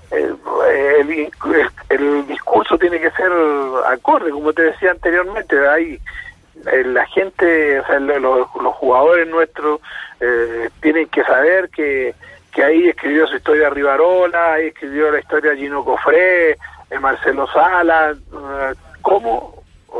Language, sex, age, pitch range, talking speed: Spanish, male, 50-69, 140-185 Hz, 125 wpm